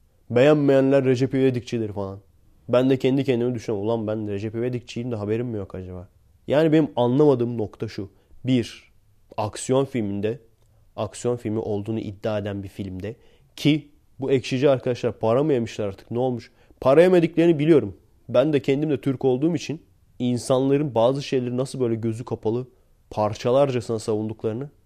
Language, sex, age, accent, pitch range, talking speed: Turkish, male, 30-49, native, 105-135 Hz, 150 wpm